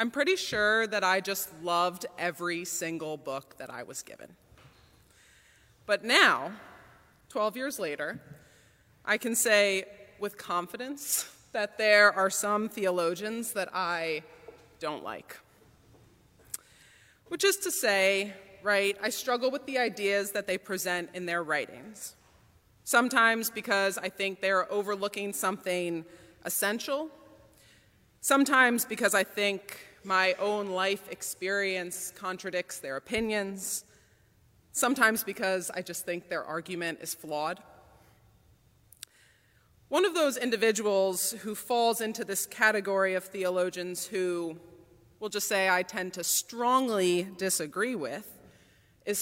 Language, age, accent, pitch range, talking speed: English, 30-49, American, 175-215 Hz, 120 wpm